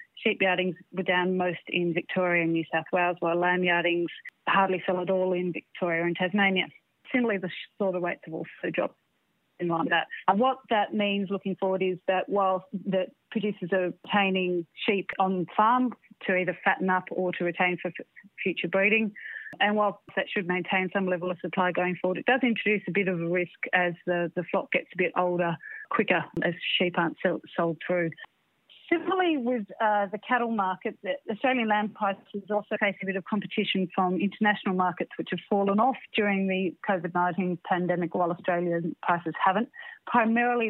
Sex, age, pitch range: female, 30-49, 180-205 Hz